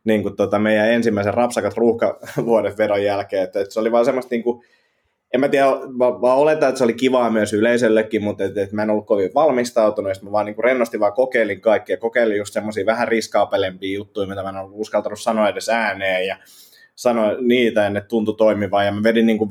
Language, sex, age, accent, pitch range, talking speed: Finnish, male, 20-39, native, 105-120 Hz, 205 wpm